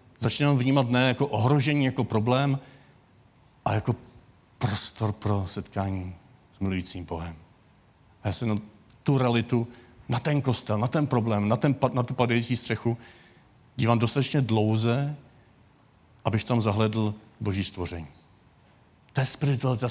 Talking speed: 135 wpm